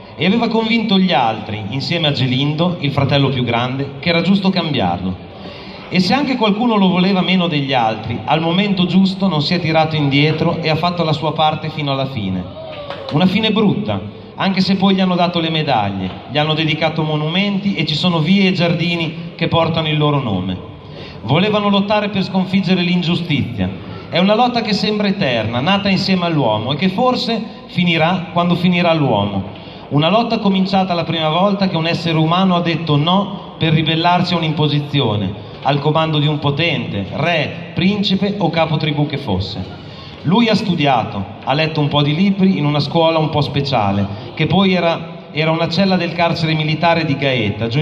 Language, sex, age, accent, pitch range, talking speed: Italian, male, 40-59, native, 140-180 Hz, 180 wpm